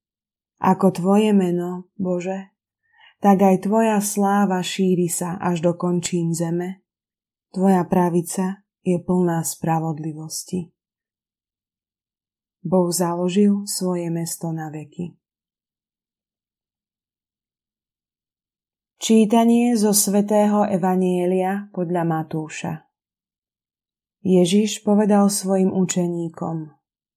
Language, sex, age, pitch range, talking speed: Slovak, female, 20-39, 170-200 Hz, 75 wpm